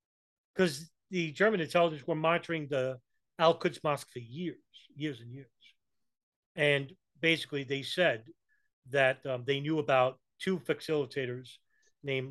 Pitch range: 130-170 Hz